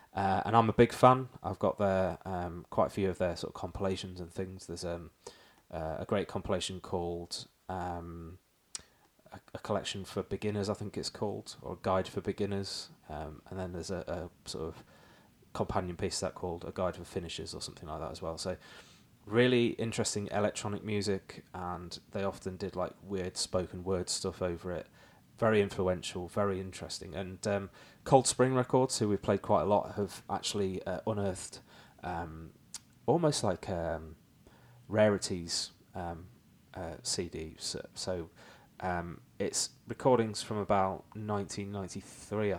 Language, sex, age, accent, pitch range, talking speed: English, male, 20-39, British, 90-105 Hz, 160 wpm